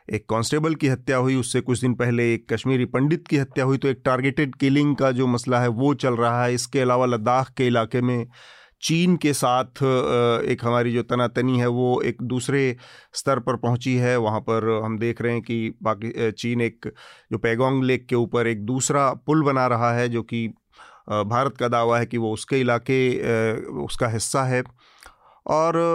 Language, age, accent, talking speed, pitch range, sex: Hindi, 40-59, native, 190 wpm, 115-130 Hz, male